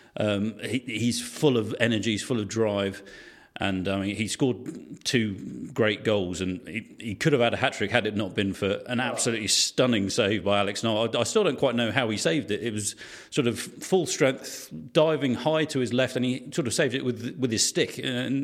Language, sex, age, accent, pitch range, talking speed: English, male, 40-59, British, 100-125 Hz, 230 wpm